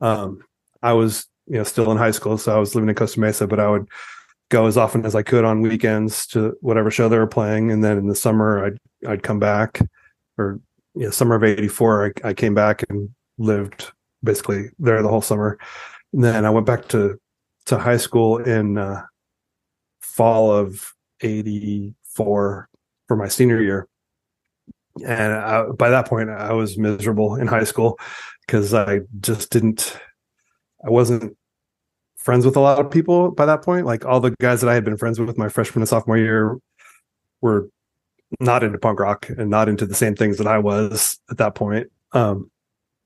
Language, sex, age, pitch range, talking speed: English, male, 30-49, 105-120 Hz, 185 wpm